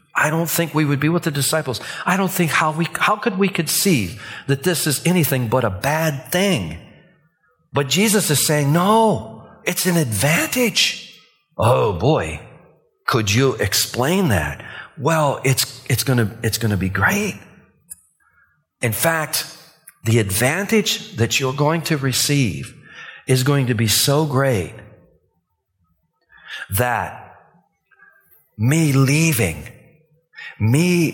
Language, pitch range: English, 115-165 Hz